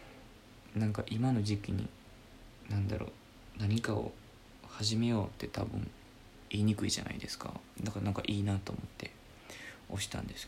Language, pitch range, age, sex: Japanese, 100-115 Hz, 20-39, male